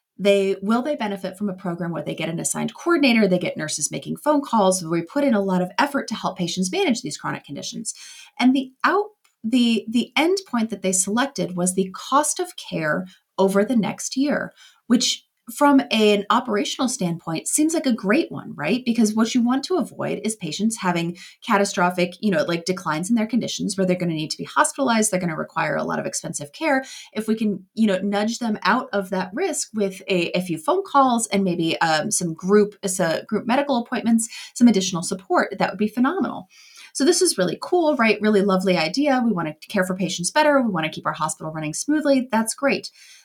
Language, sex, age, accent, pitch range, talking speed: English, female, 30-49, American, 185-245 Hz, 220 wpm